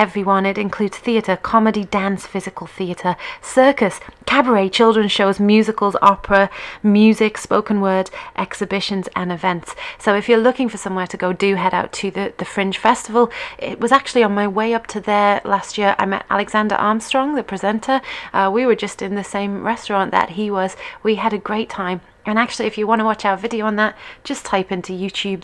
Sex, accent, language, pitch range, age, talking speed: female, British, English, 195-225 Hz, 30-49, 200 wpm